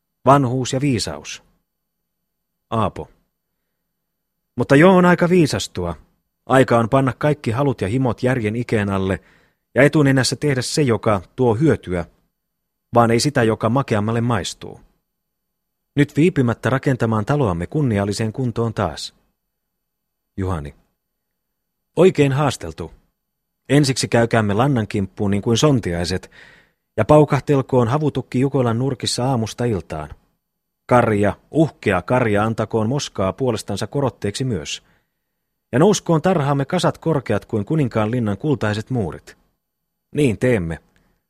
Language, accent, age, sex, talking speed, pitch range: Finnish, native, 30-49, male, 110 wpm, 105-140 Hz